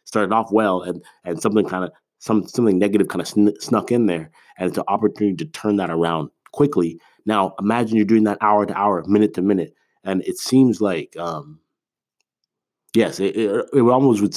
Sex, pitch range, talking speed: male, 90-115 Hz, 200 wpm